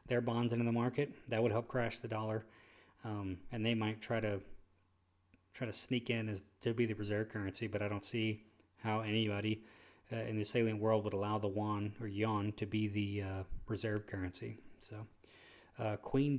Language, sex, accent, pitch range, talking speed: English, male, American, 105-130 Hz, 195 wpm